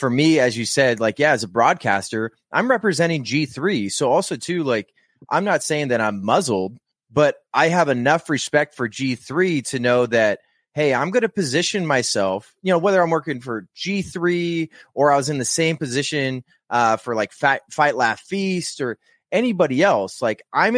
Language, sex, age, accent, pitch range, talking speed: English, male, 20-39, American, 125-160 Hz, 185 wpm